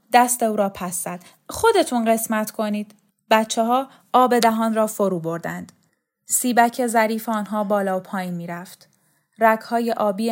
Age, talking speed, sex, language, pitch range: 10-29, 140 wpm, female, Persian, 195-245 Hz